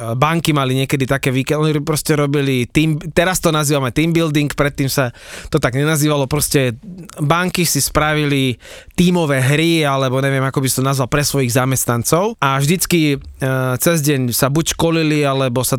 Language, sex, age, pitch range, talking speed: Slovak, male, 20-39, 130-155 Hz, 165 wpm